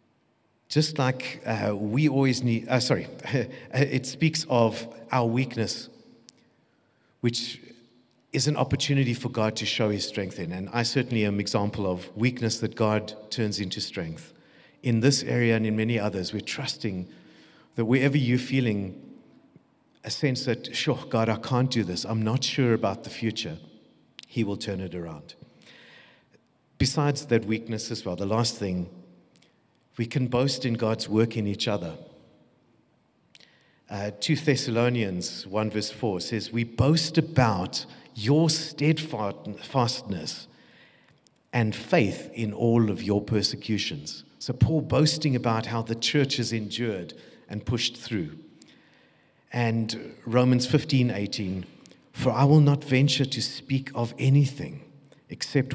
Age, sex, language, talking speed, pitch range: 50-69, male, English, 140 wpm, 110-130 Hz